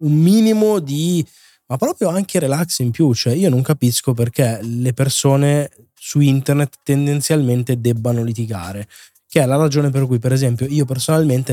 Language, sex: Italian, male